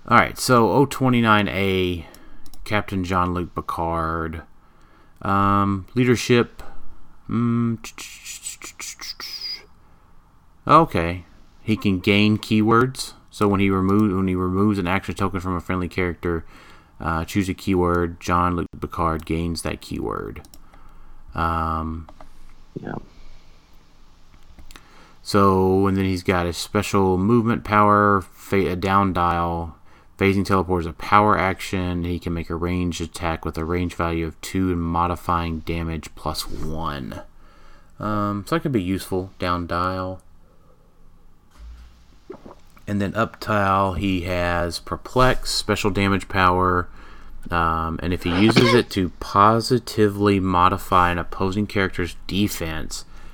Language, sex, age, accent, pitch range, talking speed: English, male, 30-49, American, 85-100 Hz, 120 wpm